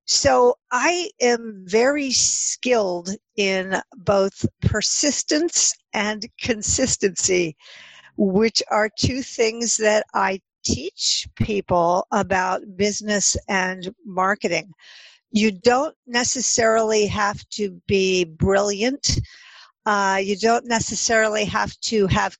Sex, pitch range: female, 195-235 Hz